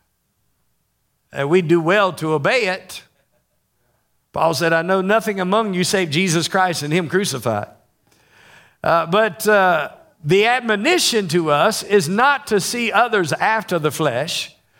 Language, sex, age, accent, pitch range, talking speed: English, male, 50-69, American, 175-225 Hz, 140 wpm